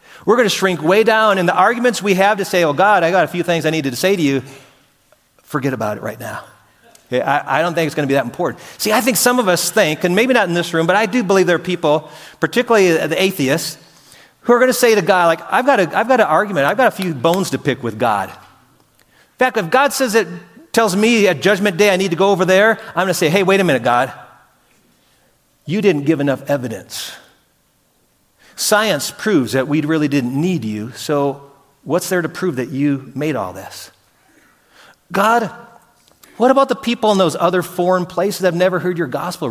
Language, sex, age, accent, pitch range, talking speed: English, male, 40-59, American, 155-215 Hz, 230 wpm